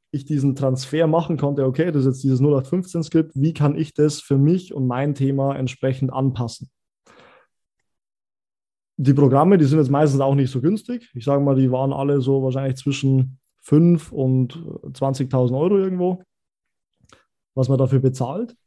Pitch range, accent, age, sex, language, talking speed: 130-155 Hz, German, 20-39, male, German, 160 wpm